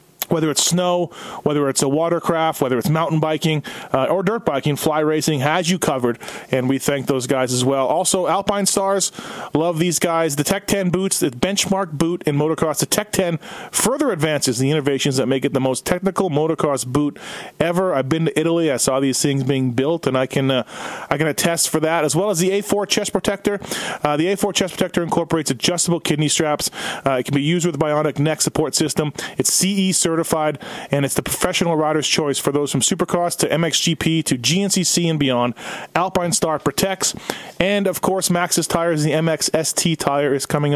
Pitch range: 145-180 Hz